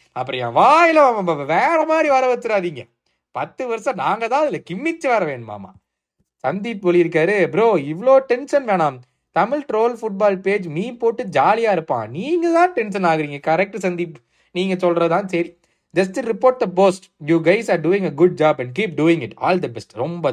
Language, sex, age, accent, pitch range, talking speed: Tamil, male, 20-39, native, 145-205 Hz, 155 wpm